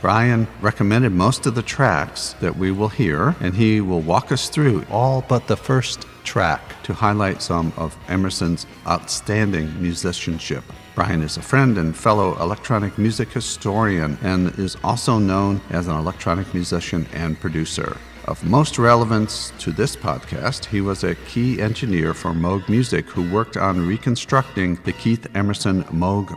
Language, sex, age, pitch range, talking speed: English, male, 50-69, 85-110 Hz, 155 wpm